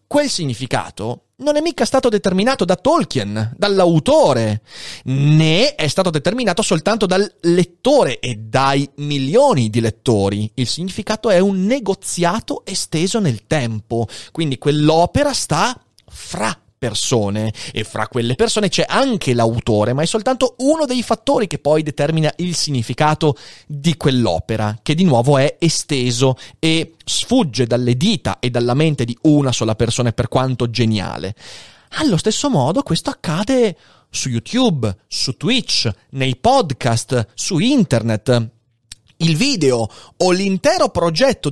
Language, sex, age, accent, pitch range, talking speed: Italian, male, 30-49, native, 125-210 Hz, 135 wpm